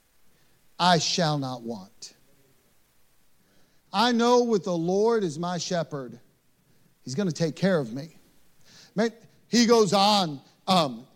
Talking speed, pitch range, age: 125 wpm, 160-225 Hz, 40-59